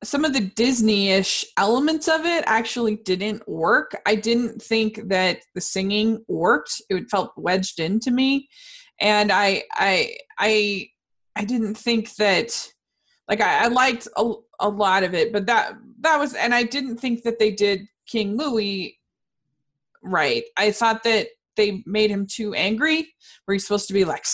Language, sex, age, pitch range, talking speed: English, female, 20-39, 195-235 Hz, 165 wpm